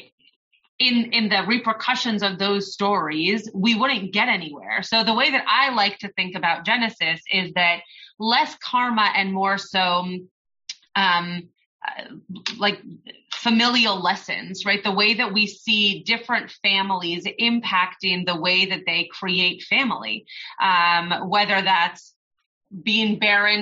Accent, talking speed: American, 130 wpm